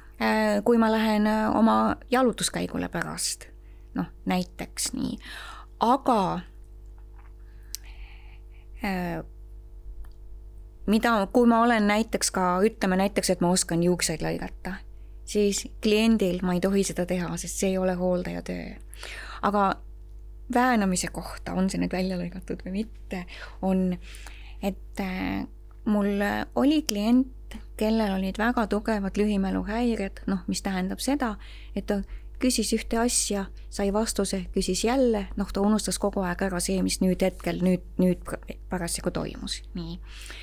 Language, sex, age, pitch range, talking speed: English, female, 20-39, 175-215 Hz, 120 wpm